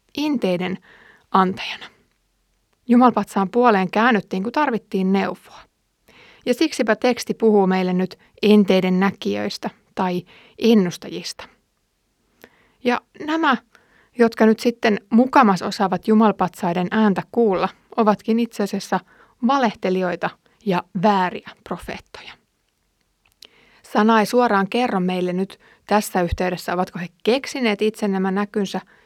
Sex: female